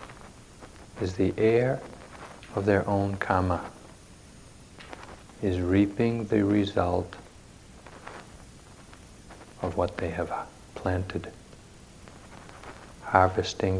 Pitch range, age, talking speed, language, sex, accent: 90-110 Hz, 60-79, 75 wpm, English, male, American